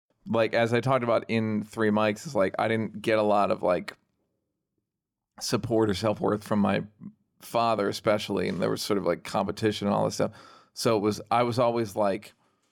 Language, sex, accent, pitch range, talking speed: English, male, American, 105-135 Hz, 205 wpm